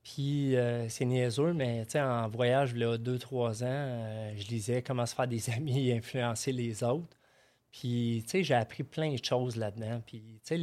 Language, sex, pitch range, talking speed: French, male, 115-130 Hz, 175 wpm